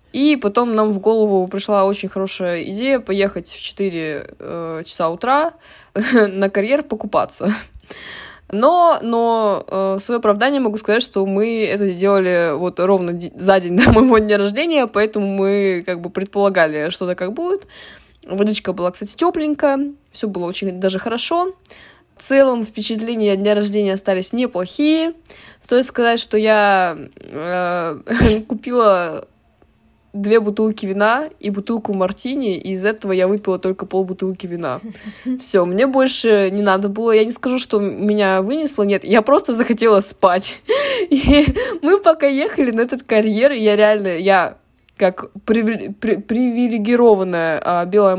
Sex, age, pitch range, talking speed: female, 20-39, 190-240 Hz, 140 wpm